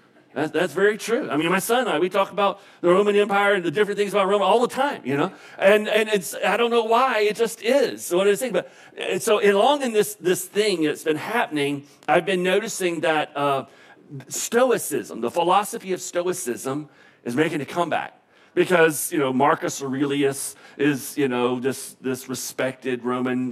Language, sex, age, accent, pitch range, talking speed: English, male, 40-59, American, 140-200 Hz, 195 wpm